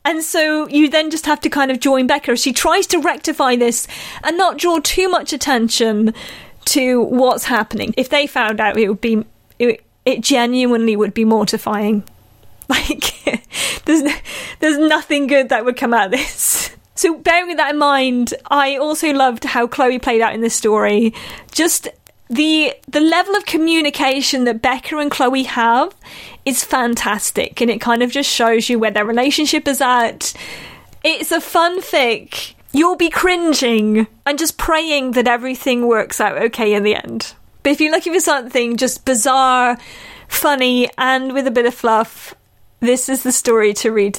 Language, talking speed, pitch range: English, 175 wpm, 235-300 Hz